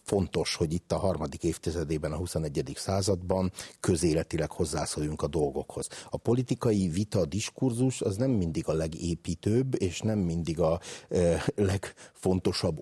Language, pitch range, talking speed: Hungarian, 85-110 Hz, 130 wpm